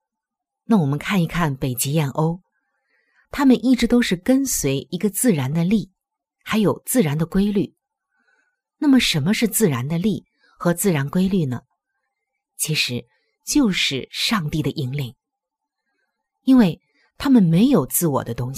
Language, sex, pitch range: Chinese, female, 150-240 Hz